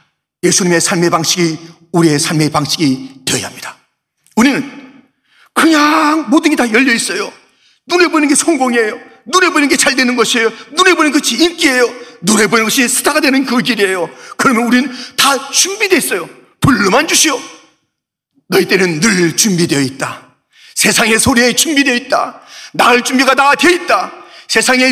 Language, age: Korean, 40-59